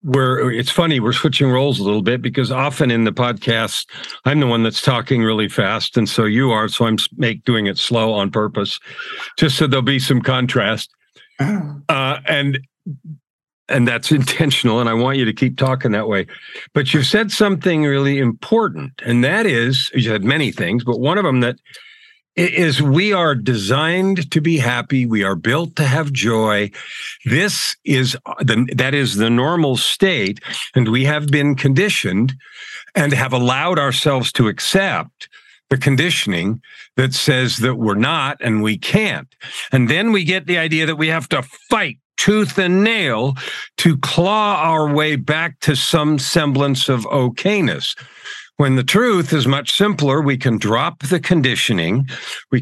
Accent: American